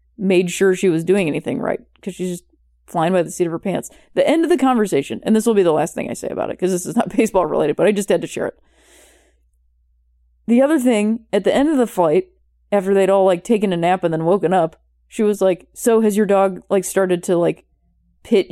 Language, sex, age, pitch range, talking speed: English, female, 20-39, 155-230 Hz, 255 wpm